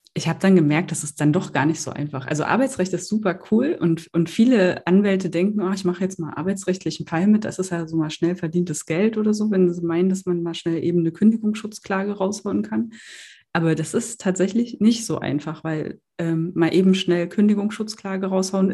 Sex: female